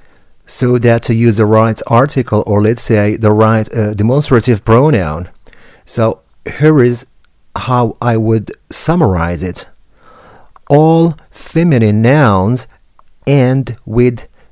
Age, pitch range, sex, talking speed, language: 40-59, 105-145 Hz, male, 115 wpm, English